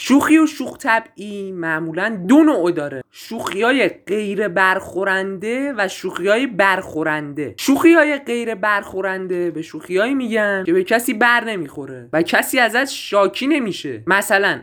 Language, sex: Persian, male